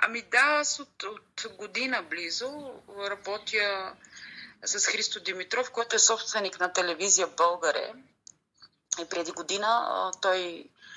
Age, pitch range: 30-49, 185-235 Hz